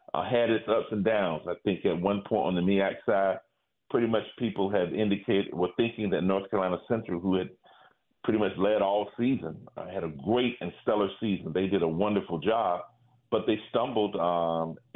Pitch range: 95-115 Hz